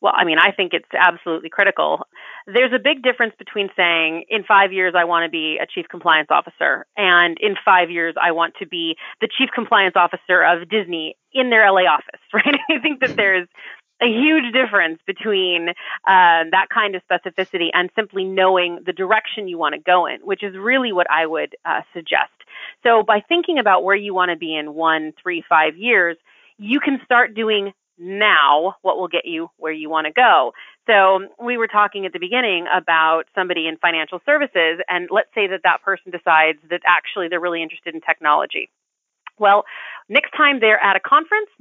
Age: 30-49